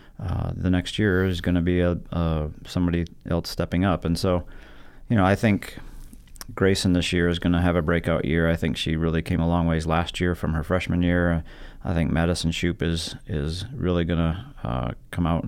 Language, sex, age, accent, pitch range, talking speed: English, male, 30-49, American, 85-95 Hz, 215 wpm